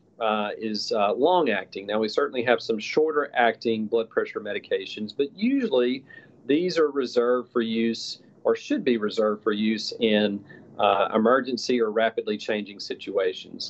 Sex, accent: male, American